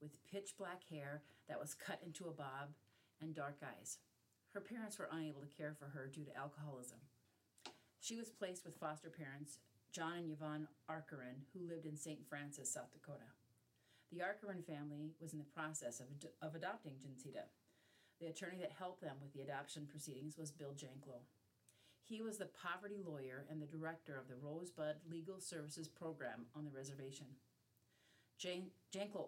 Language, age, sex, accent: English, 40-59, female, American